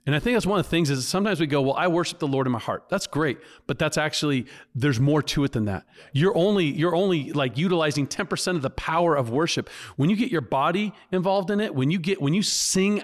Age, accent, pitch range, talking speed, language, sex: 40-59, American, 140-185 Hz, 260 wpm, English, male